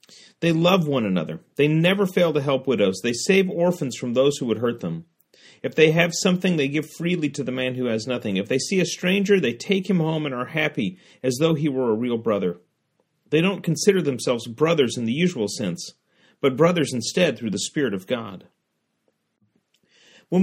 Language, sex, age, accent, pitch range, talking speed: English, male, 40-59, American, 130-180 Hz, 205 wpm